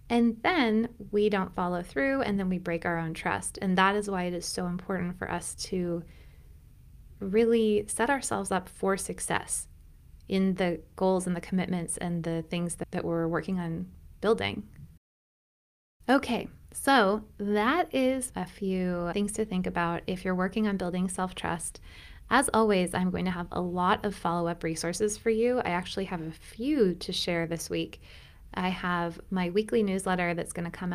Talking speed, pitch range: 180 wpm, 175-210 Hz